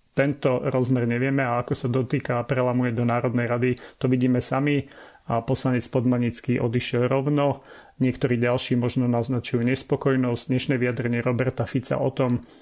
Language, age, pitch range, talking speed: Slovak, 30-49, 120-135 Hz, 145 wpm